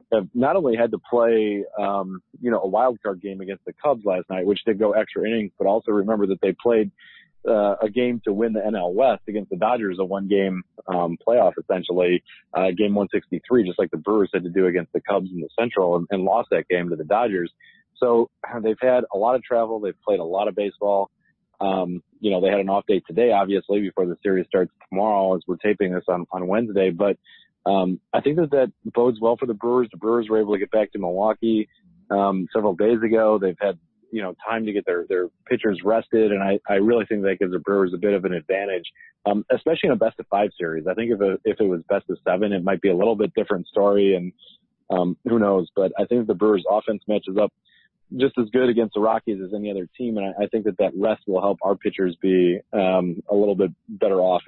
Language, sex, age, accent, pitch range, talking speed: English, male, 30-49, American, 95-110 Hz, 240 wpm